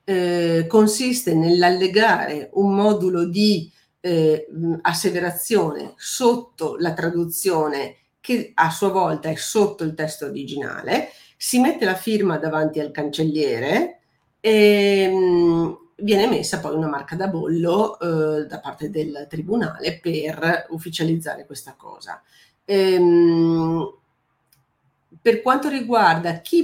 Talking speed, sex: 105 wpm, female